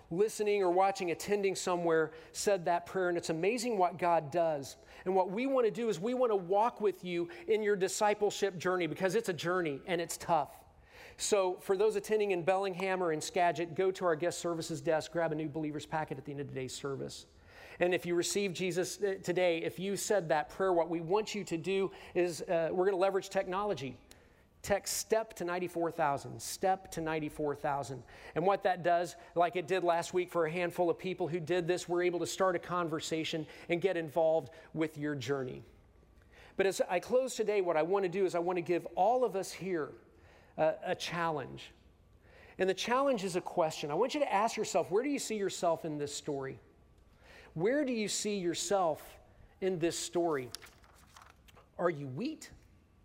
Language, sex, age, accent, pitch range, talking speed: English, male, 40-59, American, 160-195 Hz, 200 wpm